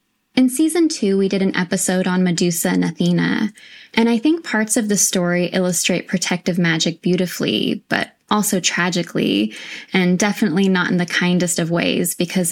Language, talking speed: English, 165 wpm